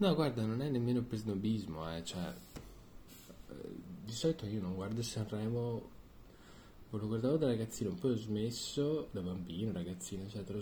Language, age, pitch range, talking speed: Italian, 20-39, 90-120 Hz, 155 wpm